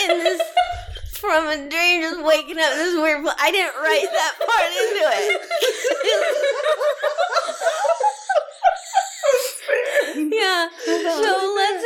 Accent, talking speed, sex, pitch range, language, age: American, 105 wpm, female, 200-325 Hz, English, 20-39